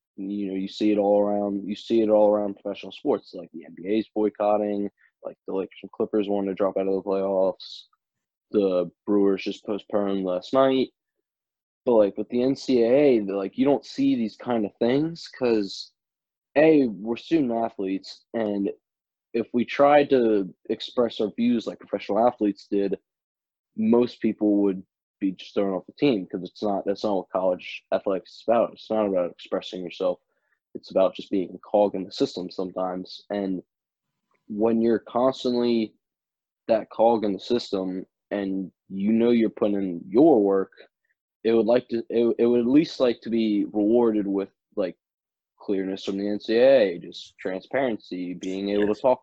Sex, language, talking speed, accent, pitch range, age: male, English, 170 wpm, American, 95-115 Hz, 20-39